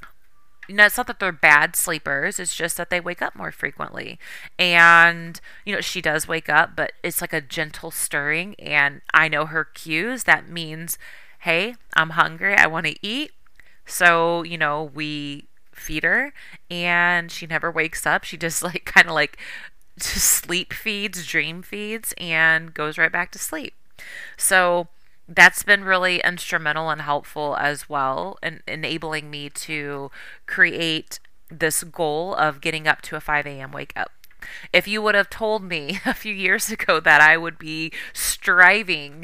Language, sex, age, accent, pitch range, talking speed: English, female, 30-49, American, 150-175 Hz, 170 wpm